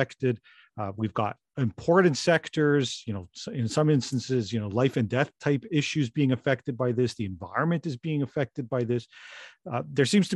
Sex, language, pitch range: male, English, 115-145 Hz